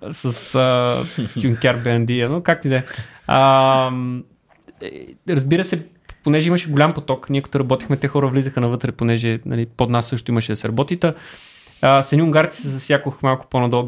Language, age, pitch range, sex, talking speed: Bulgarian, 20-39, 125-150 Hz, male, 165 wpm